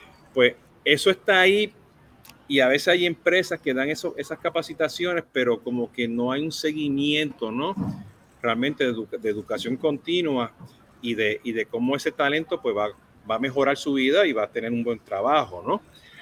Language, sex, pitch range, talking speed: Spanish, male, 125-180 Hz, 185 wpm